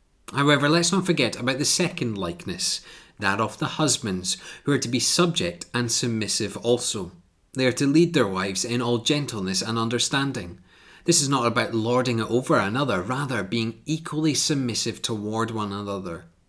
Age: 30-49